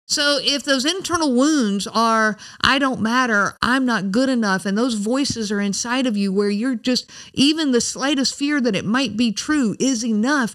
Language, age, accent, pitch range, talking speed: English, 50-69, American, 195-255 Hz, 195 wpm